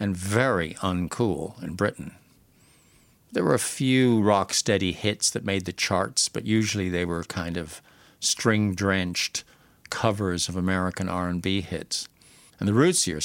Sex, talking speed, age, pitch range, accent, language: male, 140 wpm, 50-69, 90-110 Hz, American, English